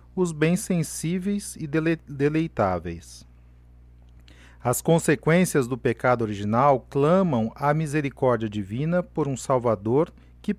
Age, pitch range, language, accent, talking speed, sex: 40-59, 110-165 Hz, Portuguese, Brazilian, 100 wpm, male